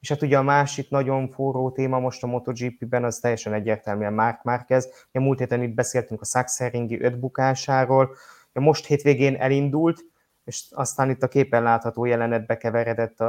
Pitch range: 115-135 Hz